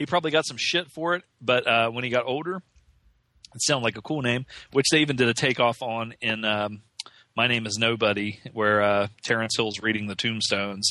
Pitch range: 110-130 Hz